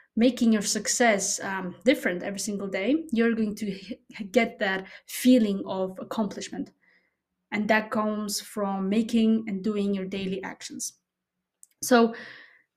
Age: 20-39